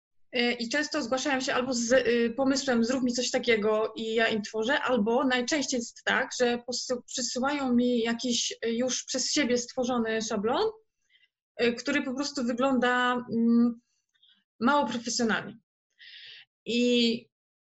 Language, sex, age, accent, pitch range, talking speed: Polish, female, 20-39, native, 235-265 Hz, 120 wpm